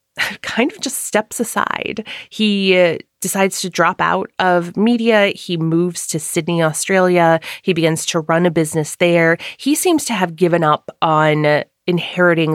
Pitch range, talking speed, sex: 155-205 Hz, 155 wpm, female